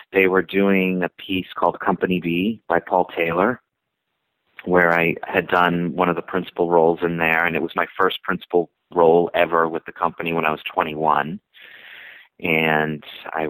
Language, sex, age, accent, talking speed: English, male, 30-49, American, 175 wpm